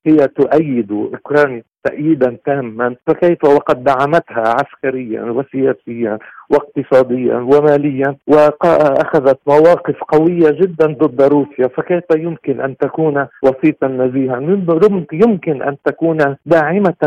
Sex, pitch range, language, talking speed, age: male, 130-155 Hz, Arabic, 105 wpm, 50-69